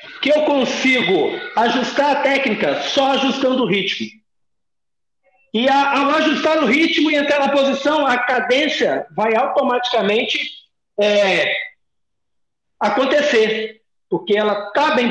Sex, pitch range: male, 220-300 Hz